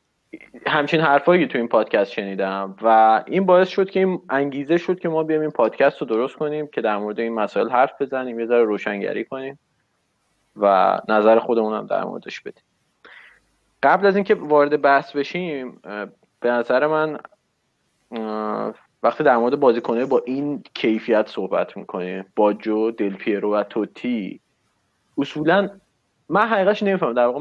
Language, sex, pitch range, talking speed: Persian, male, 115-155 Hz, 150 wpm